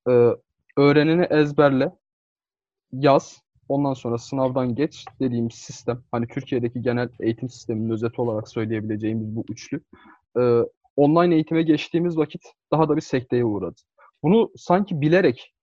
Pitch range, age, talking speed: 140-215 Hz, 30-49, 125 wpm